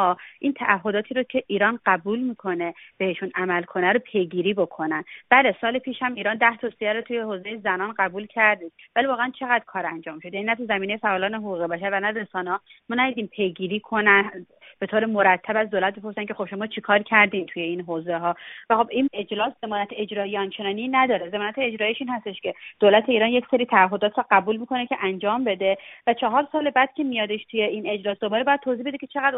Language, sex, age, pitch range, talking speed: Persian, female, 30-49, 200-245 Hz, 205 wpm